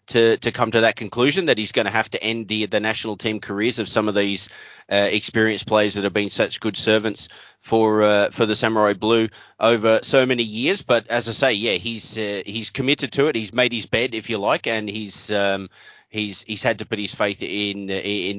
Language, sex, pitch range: English, male, 105-125 Hz